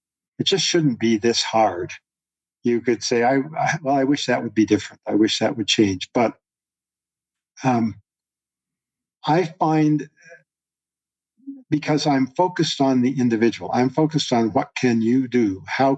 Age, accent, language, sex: 50-69, American, English, male